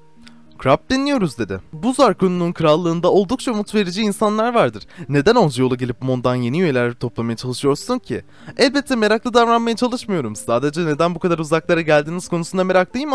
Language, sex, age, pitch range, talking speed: Turkish, male, 20-39, 140-210 Hz, 150 wpm